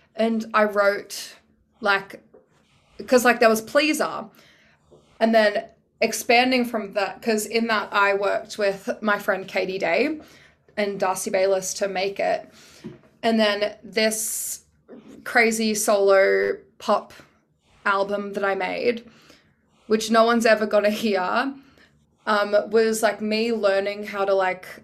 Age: 20-39